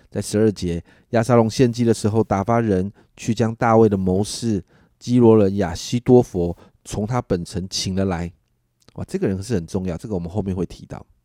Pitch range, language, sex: 95-115 Hz, Chinese, male